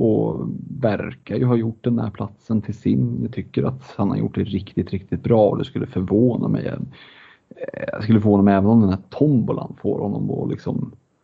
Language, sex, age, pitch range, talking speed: Swedish, male, 30-49, 95-120 Hz, 200 wpm